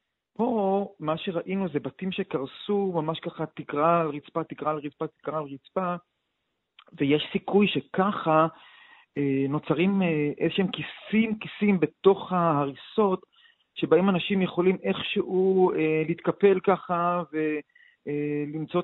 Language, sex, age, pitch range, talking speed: Hebrew, male, 40-59, 155-190 Hz, 115 wpm